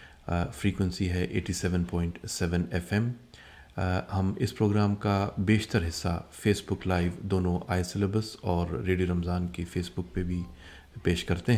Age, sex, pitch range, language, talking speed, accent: 30-49, male, 90-100 Hz, English, 135 wpm, Indian